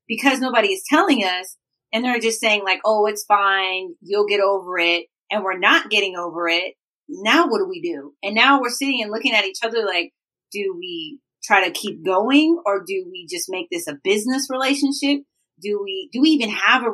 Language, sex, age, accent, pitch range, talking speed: English, female, 30-49, American, 190-270 Hz, 215 wpm